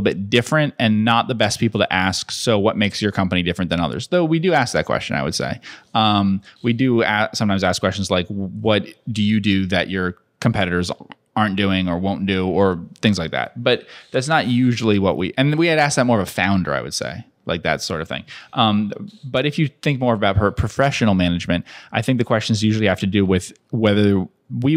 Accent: American